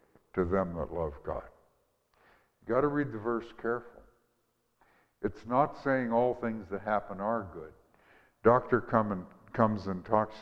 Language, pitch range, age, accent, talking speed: English, 95-115 Hz, 60-79, American, 155 wpm